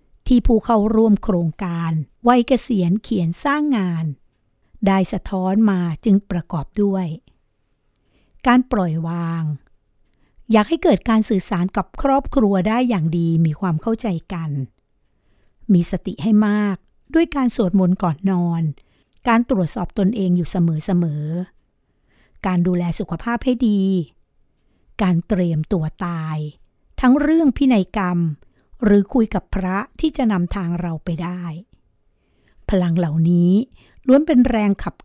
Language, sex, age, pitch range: Thai, female, 60-79, 170-230 Hz